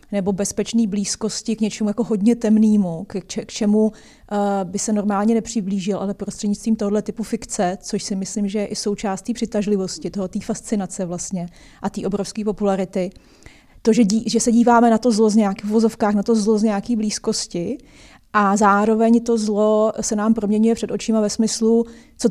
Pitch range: 200-225 Hz